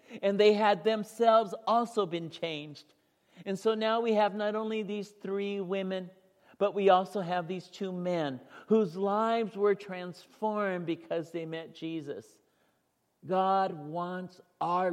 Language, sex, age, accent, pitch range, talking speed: English, male, 50-69, American, 160-195 Hz, 140 wpm